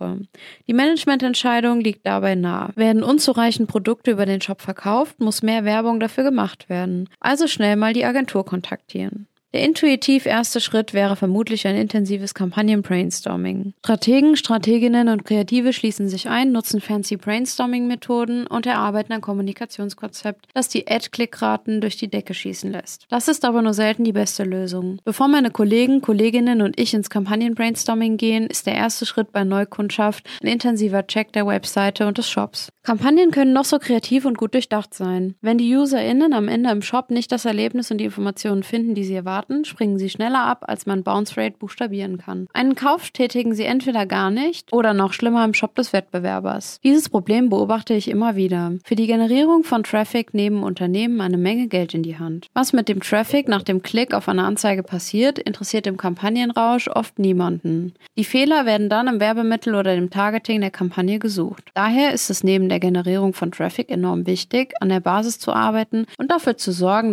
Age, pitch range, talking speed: 20-39, 195-240 Hz, 180 wpm